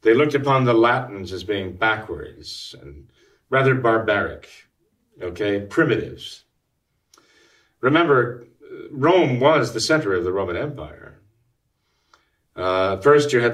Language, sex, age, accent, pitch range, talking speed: English, male, 40-59, American, 105-135 Hz, 115 wpm